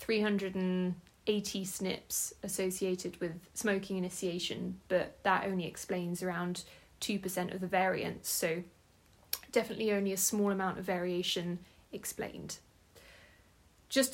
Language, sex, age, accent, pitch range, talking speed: English, female, 20-39, British, 195-225 Hz, 105 wpm